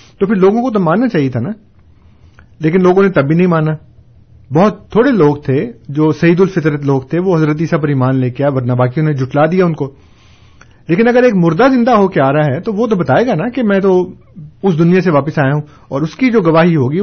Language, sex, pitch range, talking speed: Urdu, male, 130-185 Hz, 245 wpm